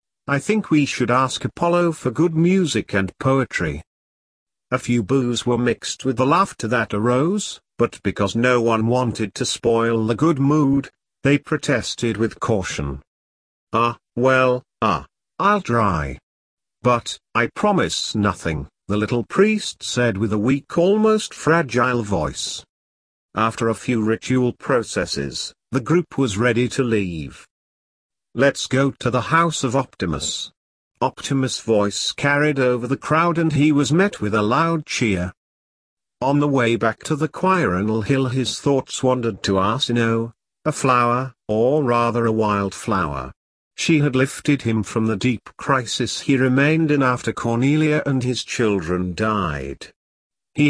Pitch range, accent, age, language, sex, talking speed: 110-145 Hz, British, 50-69, English, male, 145 wpm